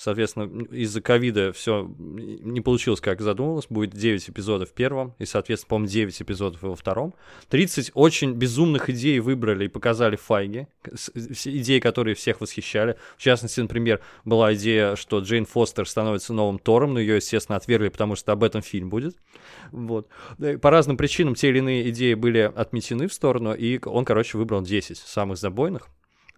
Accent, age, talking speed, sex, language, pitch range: native, 20-39, 165 wpm, male, Russian, 105-130 Hz